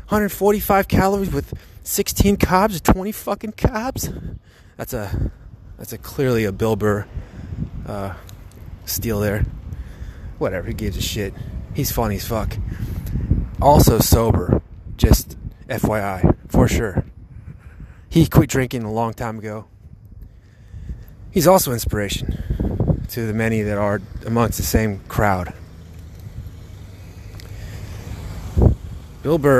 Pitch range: 95-130 Hz